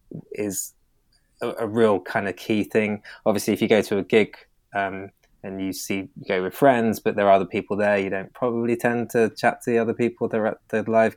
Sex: male